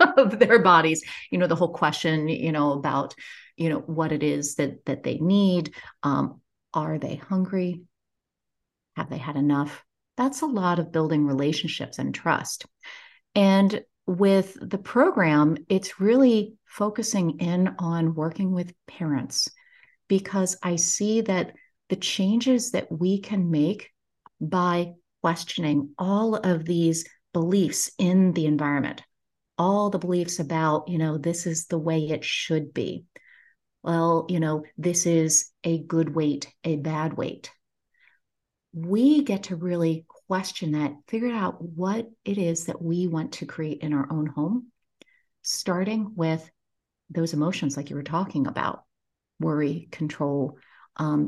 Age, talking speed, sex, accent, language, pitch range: 40-59, 145 wpm, female, American, English, 155-195 Hz